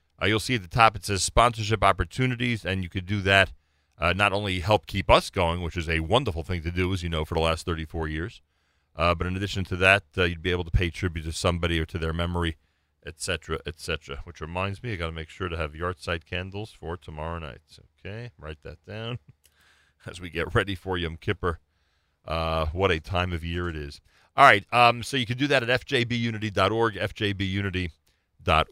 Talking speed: 220 wpm